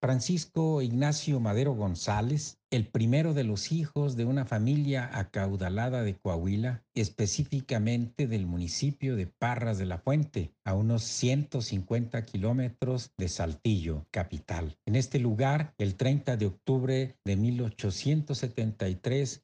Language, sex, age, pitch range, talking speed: Spanish, male, 50-69, 95-135 Hz, 120 wpm